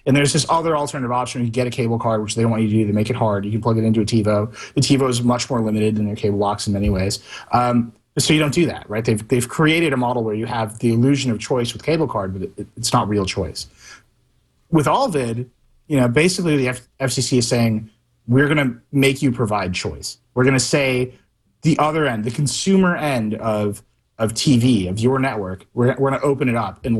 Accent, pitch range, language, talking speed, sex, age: American, 110-140 Hz, English, 250 wpm, male, 30-49